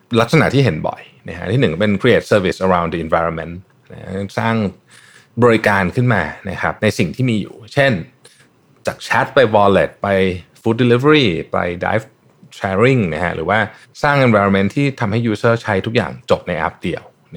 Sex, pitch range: male, 90-115 Hz